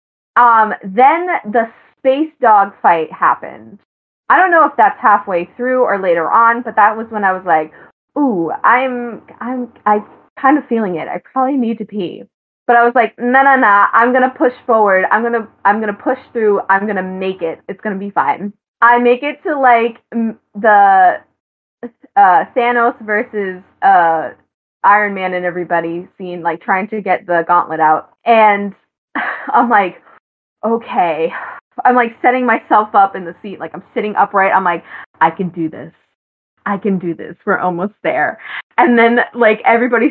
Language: English